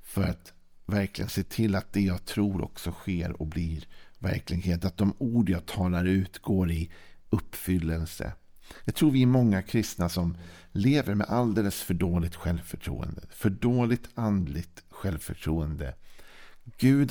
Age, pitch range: 50-69, 85-105 Hz